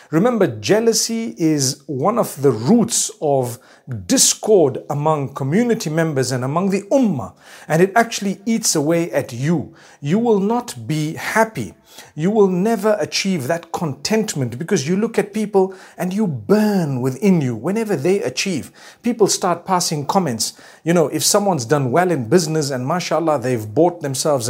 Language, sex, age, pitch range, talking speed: English, male, 50-69, 145-195 Hz, 155 wpm